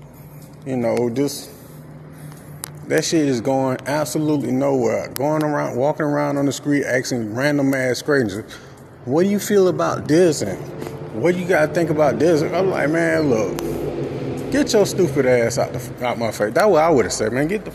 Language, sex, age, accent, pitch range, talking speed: English, male, 30-49, American, 125-160 Hz, 195 wpm